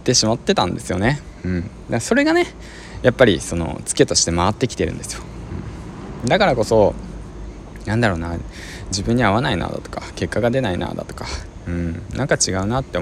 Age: 20-39